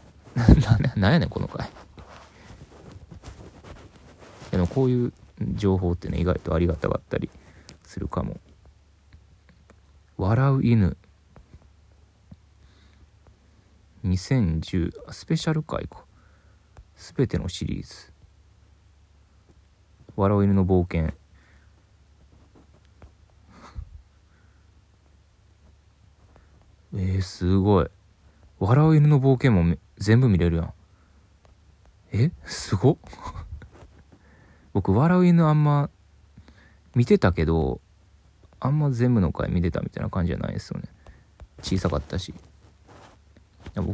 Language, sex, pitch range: Japanese, male, 85-100 Hz